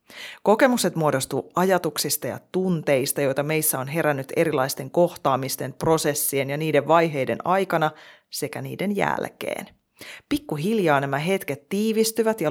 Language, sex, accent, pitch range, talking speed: Finnish, female, native, 145-195 Hz, 115 wpm